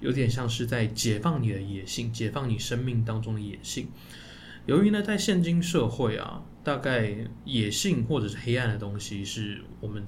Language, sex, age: Chinese, male, 20-39